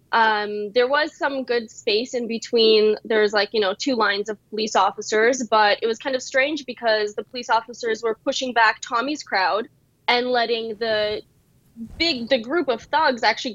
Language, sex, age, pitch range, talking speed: English, female, 10-29, 215-260 Hz, 180 wpm